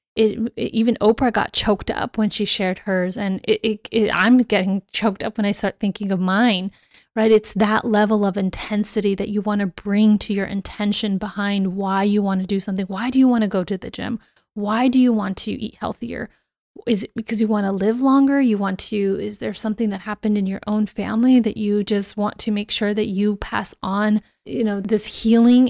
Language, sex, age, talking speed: English, female, 30-49, 225 wpm